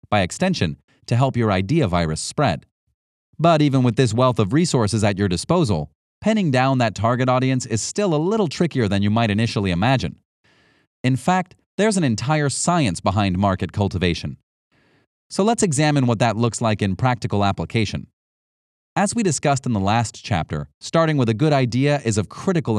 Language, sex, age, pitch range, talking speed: English, male, 30-49, 100-150 Hz, 175 wpm